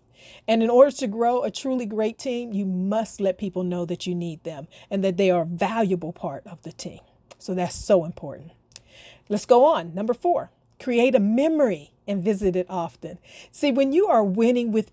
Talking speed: 200 wpm